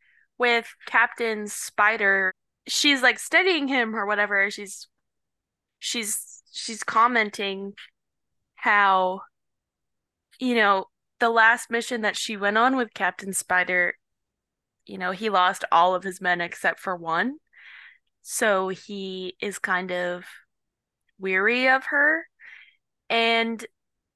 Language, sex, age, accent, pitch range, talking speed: English, female, 10-29, American, 195-245 Hz, 115 wpm